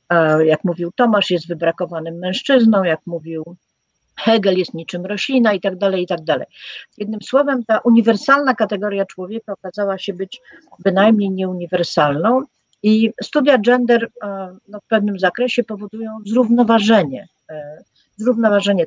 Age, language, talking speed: 50-69, Polish, 120 wpm